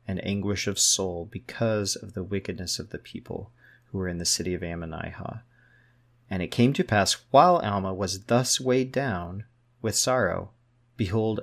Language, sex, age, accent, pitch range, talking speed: English, male, 30-49, American, 105-125 Hz, 170 wpm